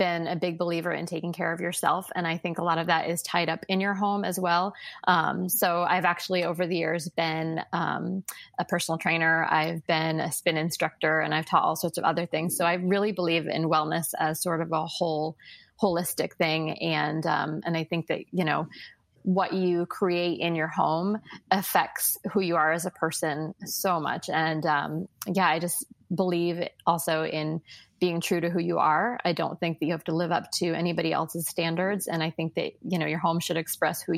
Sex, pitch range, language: female, 165-180 Hz, English